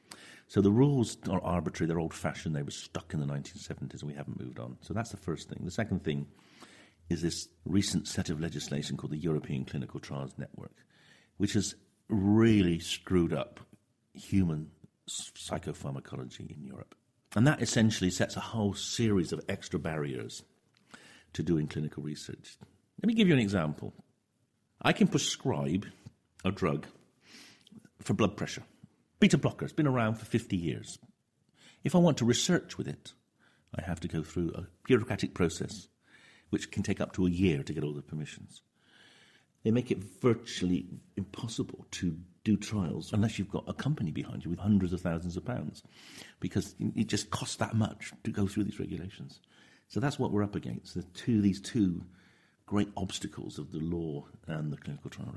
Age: 50-69